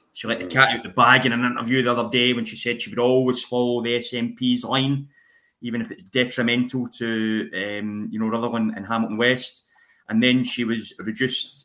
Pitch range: 110-135 Hz